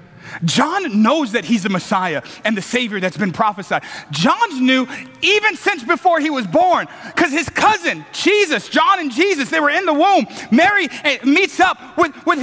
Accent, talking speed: American, 175 wpm